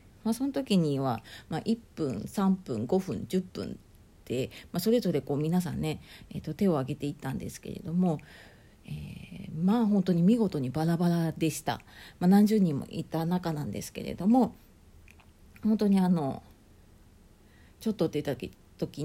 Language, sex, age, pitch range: Japanese, female, 40-59, 150-195 Hz